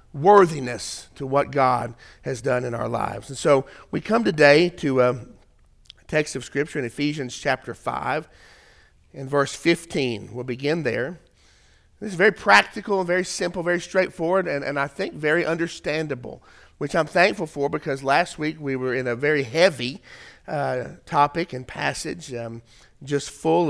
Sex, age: male, 50-69